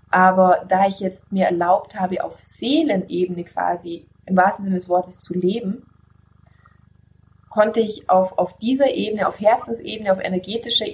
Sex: female